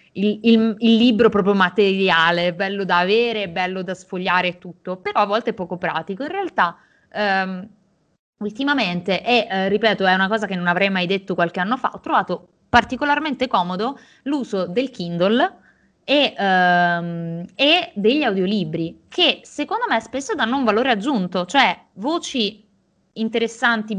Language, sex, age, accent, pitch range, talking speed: Italian, female, 20-39, native, 185-230 Hz, 150 wpm